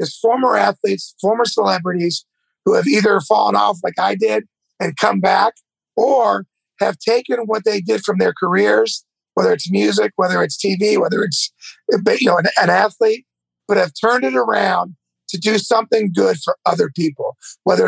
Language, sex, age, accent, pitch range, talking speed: English, male, 50-69, American, 185-245 Hz, 160 wpm